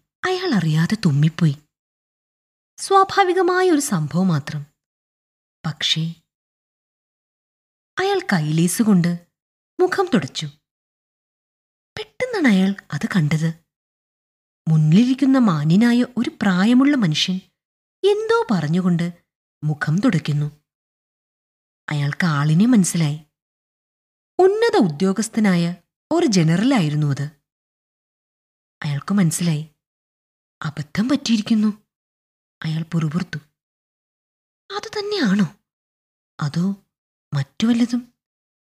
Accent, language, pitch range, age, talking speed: native, Malayalam, 155-245 Hz, 20-39, 65 wpm